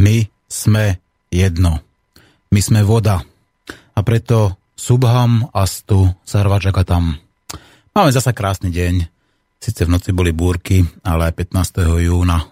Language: Slovak